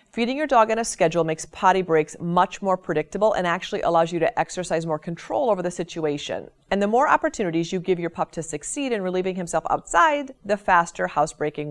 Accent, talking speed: American, 205 wpm